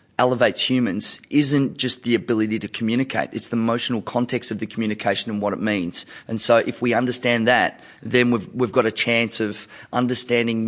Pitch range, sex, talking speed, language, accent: 110-125 Hz, male, 185 wpm, English, Australian